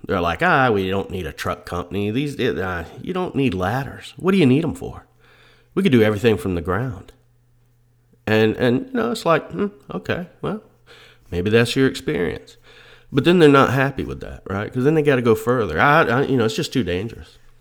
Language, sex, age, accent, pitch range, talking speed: English, male, 40-59, American, 100-135 Hz, 220 wpm